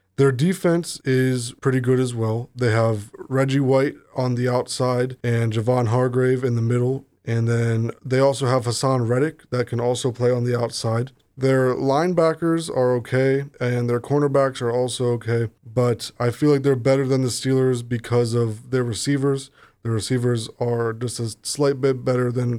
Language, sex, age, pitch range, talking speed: English, male, 20-39, 115-130 Hz, 175 wpm